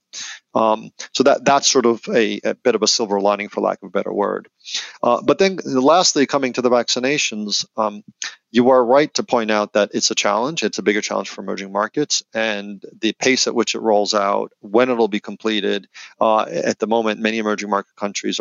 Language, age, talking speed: English, 40-59, 210 wpm